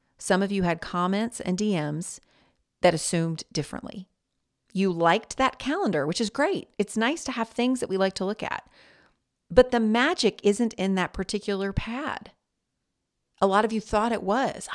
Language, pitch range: English, 170-225 Hz